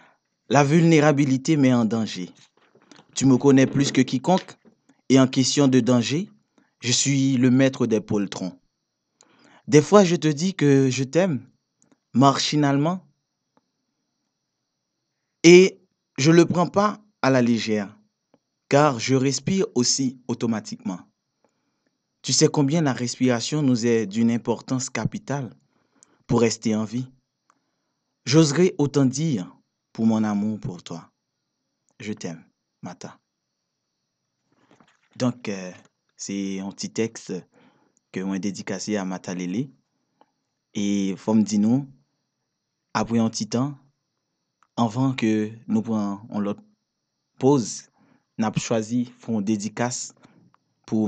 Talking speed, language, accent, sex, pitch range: 120 wpm, French, French, male, 110-140 Hz